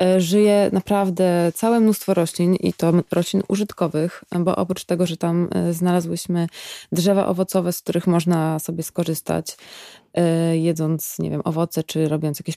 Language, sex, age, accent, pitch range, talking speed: Polish, female, 20-39, native, 170-195 Hz, 140 wpm